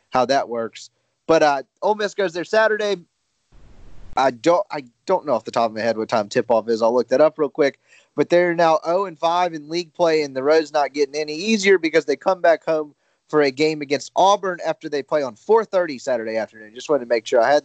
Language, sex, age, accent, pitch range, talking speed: English, male, 30-49, American, 125-170 Hz, 250 wpm